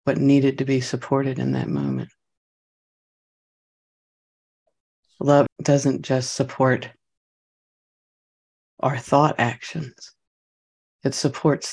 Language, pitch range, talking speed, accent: English, 120-140 Hz, 85 wpm, American